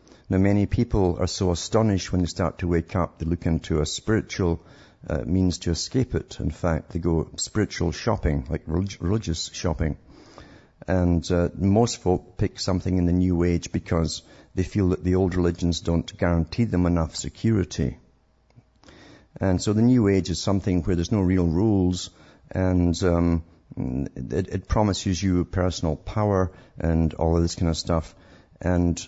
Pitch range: 85-95 Hz